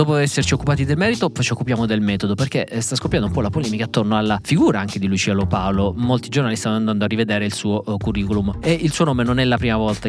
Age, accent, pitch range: 20-39, native, 105-125 Hz